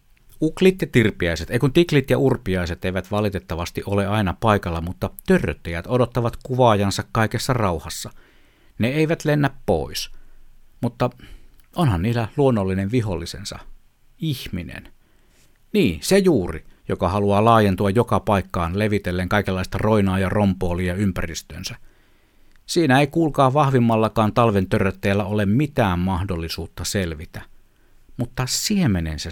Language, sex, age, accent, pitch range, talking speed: Finnish, male, 60-79, native, 95-125 Hz, 110 wpm